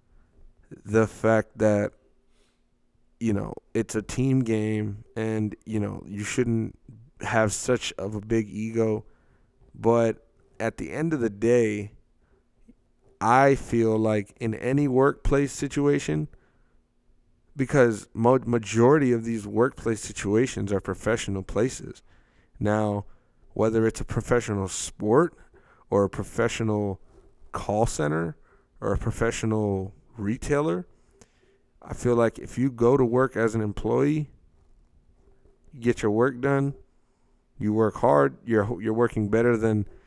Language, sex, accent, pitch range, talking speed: English, male, American, 105-120 Hz, 120 wpm